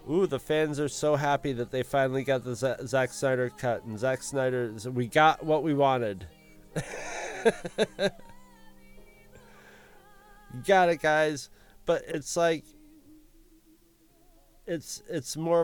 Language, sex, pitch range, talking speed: English, male, 110-155 Hz, 125 wpm